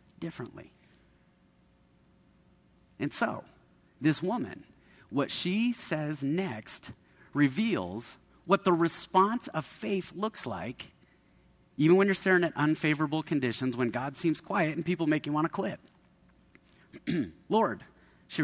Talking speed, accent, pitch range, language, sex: 120 wpm, American, 130-180 Hz, English, male